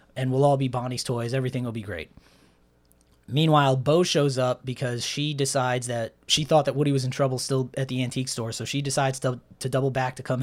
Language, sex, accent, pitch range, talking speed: English, male, American, 120-140 Hz, 225 wpm